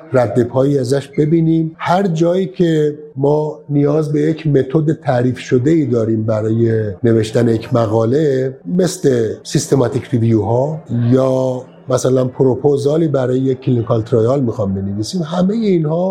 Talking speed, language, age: 125 wpm, Persian, 50-69